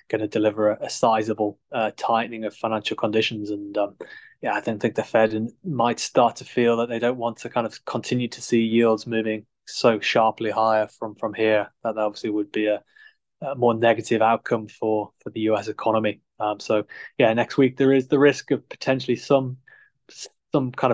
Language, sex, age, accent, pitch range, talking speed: English, male, 20-39, British, 110-125 Hz, 205 wpm